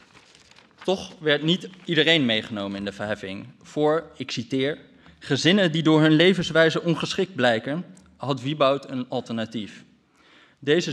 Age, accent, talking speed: 20-39, Dutch, 125 wpm